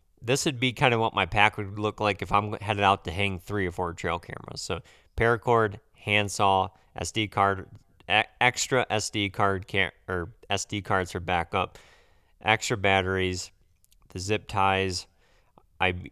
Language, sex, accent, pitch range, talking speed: English, male, American, 95-110 Hz, 160 wpm